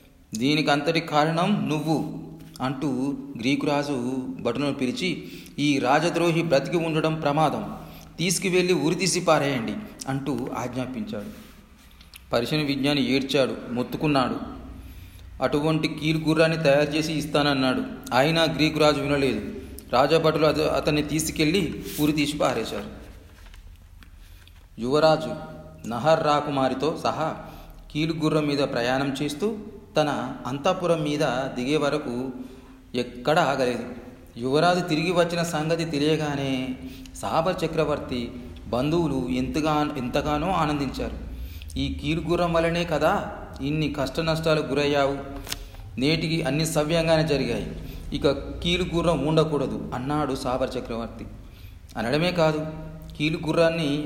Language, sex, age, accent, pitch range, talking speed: Telugu, male, 40-59, native, 130-160 Hz, 90 wpm